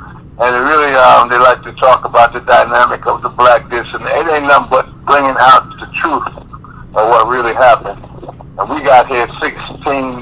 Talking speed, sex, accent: 190 wpm, male, American